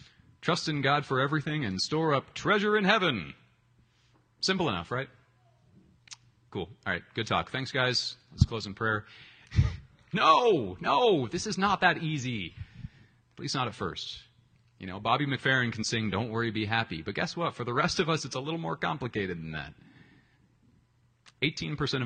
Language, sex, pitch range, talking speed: English, male, 95-125 Hz, 170 wpm